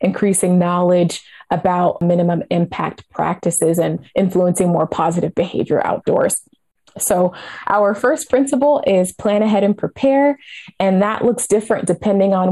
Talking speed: 130 wpm